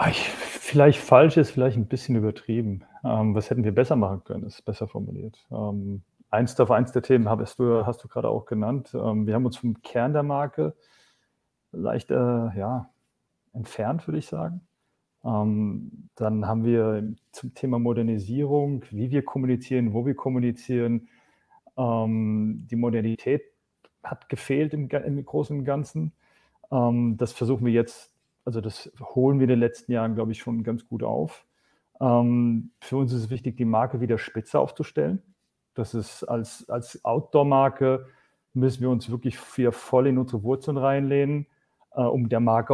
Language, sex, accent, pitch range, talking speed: German, male, German, 115-135 Hz, 160 wpm